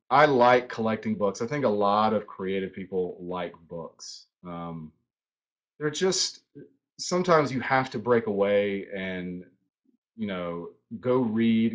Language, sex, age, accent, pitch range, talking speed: English, male, 30-49, American, 95-120 Hz, 140 wpm